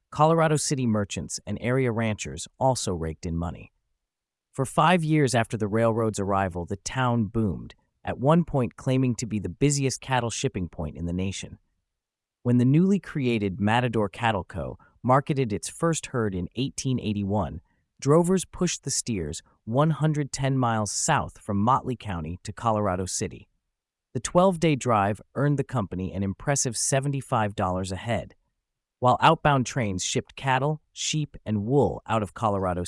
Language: English